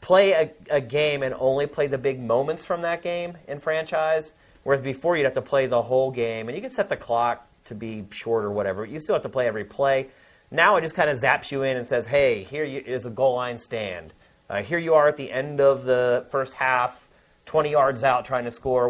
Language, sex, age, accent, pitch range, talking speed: English, male, 30-49, American, 130-175 Hz, 245 wpm